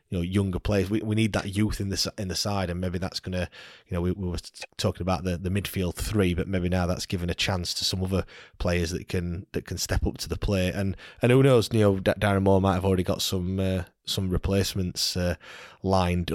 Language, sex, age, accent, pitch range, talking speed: English, male, 20-39, British, 95-105 Hz, 255 wpm